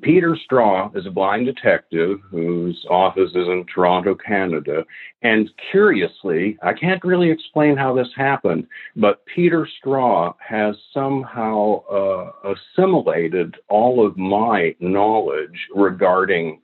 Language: English